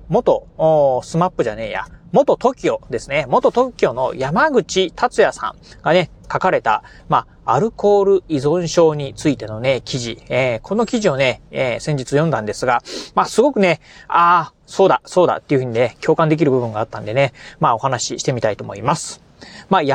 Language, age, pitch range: Japanese, 30-49, 140-190 Hz